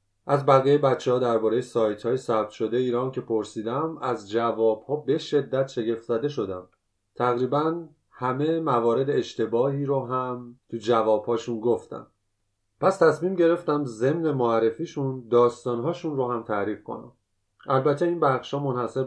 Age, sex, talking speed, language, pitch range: 30-49, male, 135 wpm, Persian, 115-140 Hz